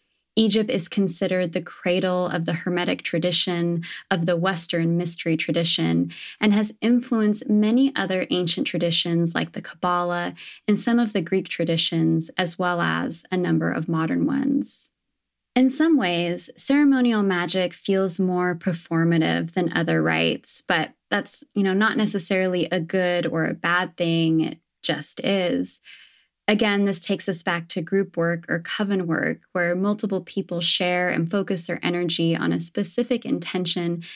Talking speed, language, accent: 150 wpm, English, American